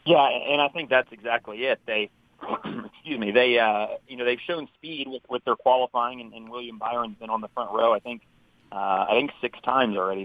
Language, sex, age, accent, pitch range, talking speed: English, male, 40-59, American, 110-130 Hz, 225 wpm